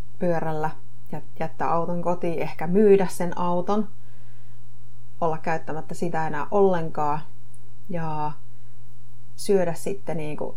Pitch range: 125-175 Hz